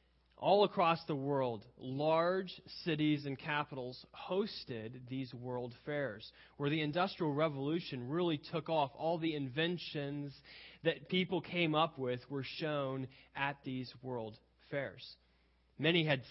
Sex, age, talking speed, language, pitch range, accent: male, 30-49, 130 wpm, English, 120-160 Hz, American